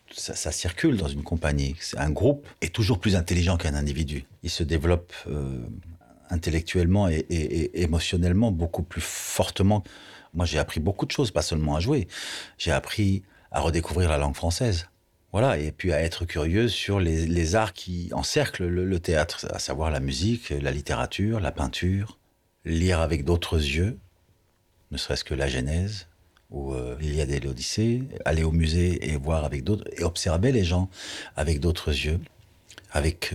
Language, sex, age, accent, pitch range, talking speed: French, male, 40-59, French, 75-90 Hz, 175 wpm